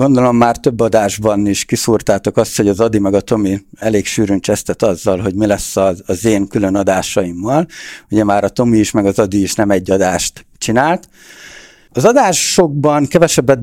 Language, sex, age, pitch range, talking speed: Hungarian, male, 60-79, 105-125 Hz, 175 wpm